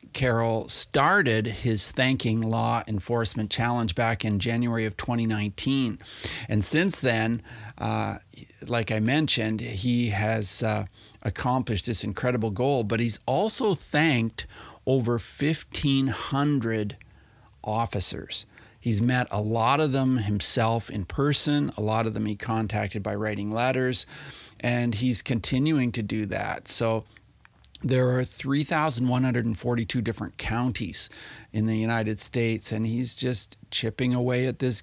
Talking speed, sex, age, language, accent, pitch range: 130 wpm, male, 40-59, English, American, 110-125 Hz